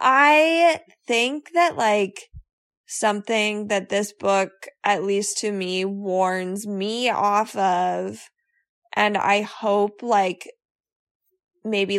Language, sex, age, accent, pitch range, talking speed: English, female, 20-39, American, 190-240 Hz, 105 wpm